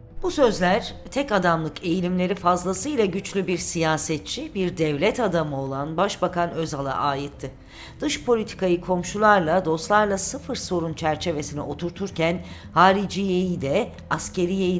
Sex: female